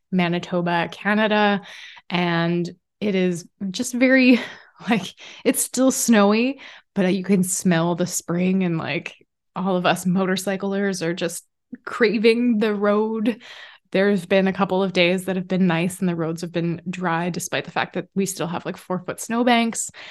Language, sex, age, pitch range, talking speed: English, female, 20-39, 175-210 Hz, 165 wpm